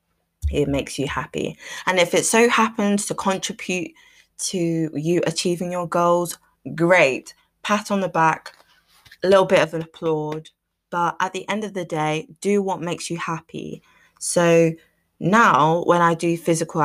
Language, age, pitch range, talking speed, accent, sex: English, 20-39, 145-180 Hz, 160 wpm, British, female